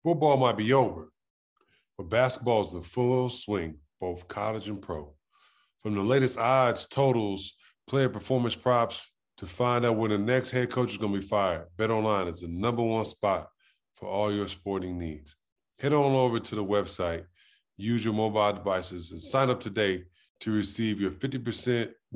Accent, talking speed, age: American, 175 wpm, 20-39